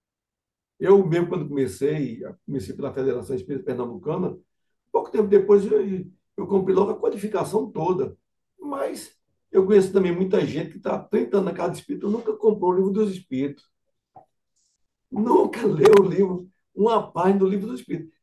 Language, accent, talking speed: Portuguese, Brazilian, 160 wpm